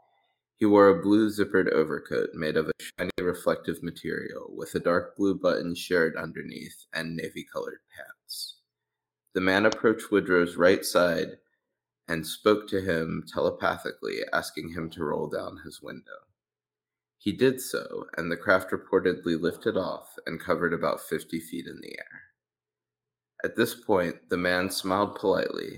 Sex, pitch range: male, 85-110 Hz